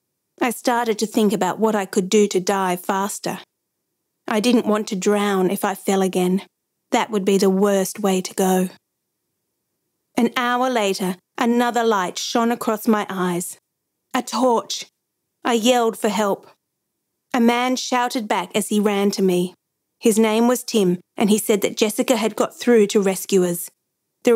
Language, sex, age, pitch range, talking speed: English, female, 40-59, 195-235 Hz, 170 wpm